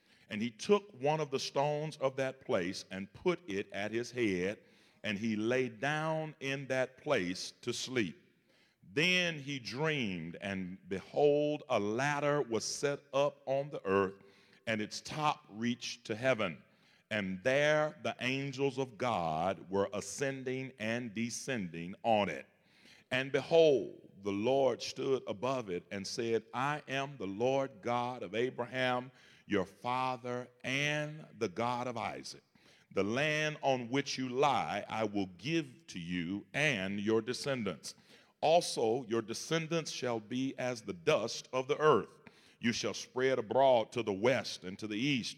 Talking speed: 150 wpm